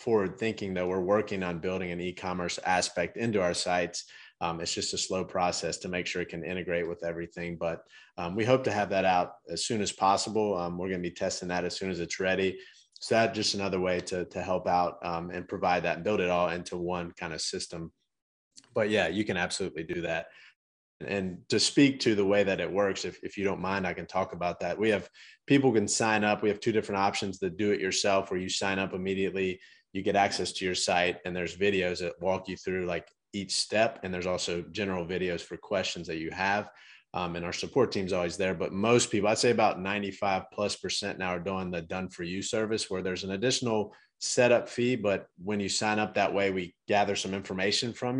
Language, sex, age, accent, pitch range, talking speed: English, male, 30-49, American, 90-100 Hz, 235 wpm